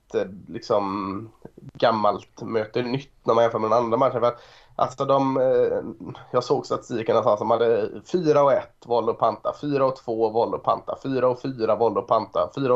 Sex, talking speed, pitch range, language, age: male, 185 wpm, 115-155 Hz, Swedish, 20-39